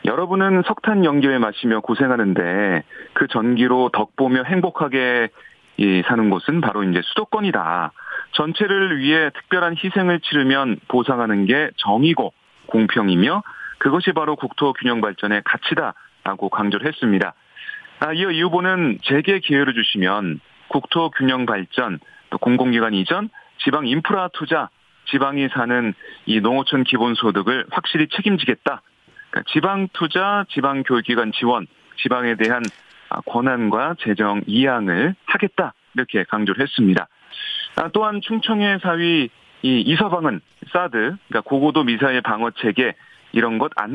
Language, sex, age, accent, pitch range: Korean, male, 40-59, native, 120-185 Hz